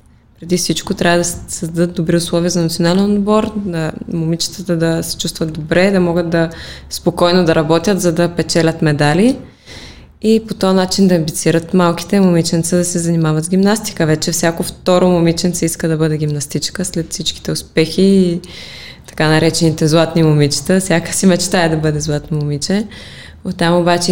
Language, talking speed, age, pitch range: Bulgarian, 160 wpm, 20-39, 160-185 Hz